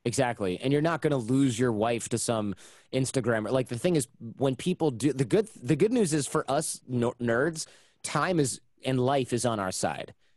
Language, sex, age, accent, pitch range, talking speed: English, male, 30-49, American, 110-140 Hz, 215 wpm